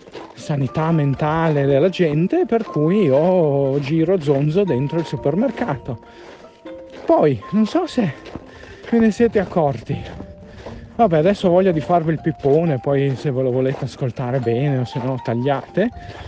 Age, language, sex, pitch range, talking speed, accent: 40-59, Italian, male, 150-250 Hz, 140 wpm, native